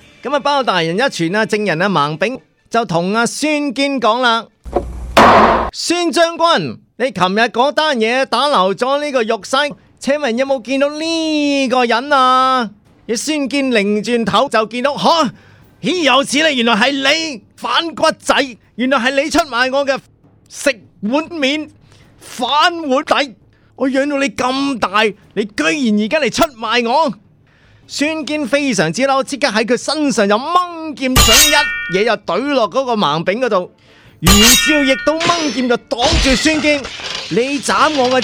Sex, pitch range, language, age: male, 215-280 Hz, Chinese, 30-49